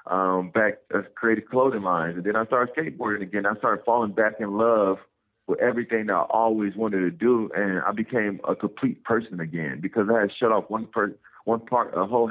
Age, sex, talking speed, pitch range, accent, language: 40-59, male, 205 wpm, 95-115 Hz, American, English